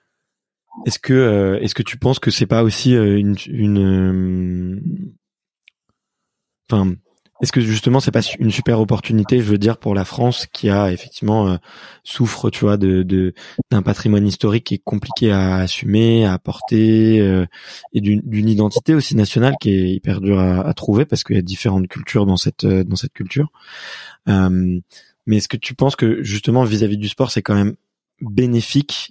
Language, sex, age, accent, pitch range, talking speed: French, male, 20-39, French, 95-115 Hz, 185 wpm